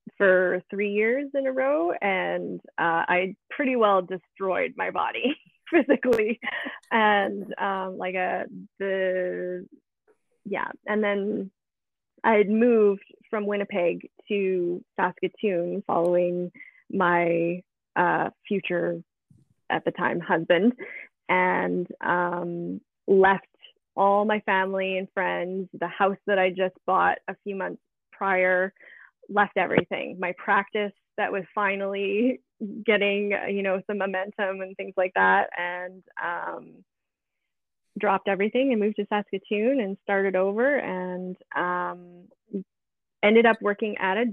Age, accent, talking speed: 20-39, American, 120 wpm